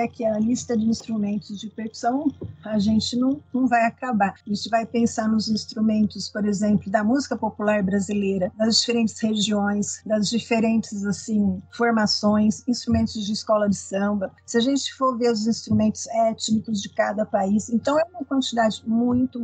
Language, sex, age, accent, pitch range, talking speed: Portuguese, female, 50-69, Brazilian, 205-240 Hz, 165 wpm